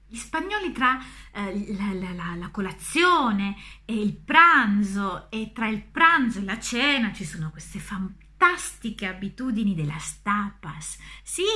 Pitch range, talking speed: 195-270 Hz, 140 wpm